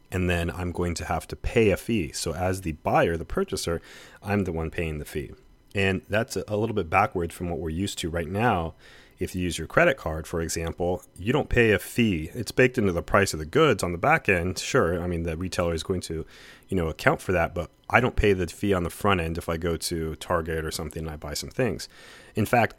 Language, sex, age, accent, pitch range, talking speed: English, male, 30-49, American, 80-95 Hz, 255 wpm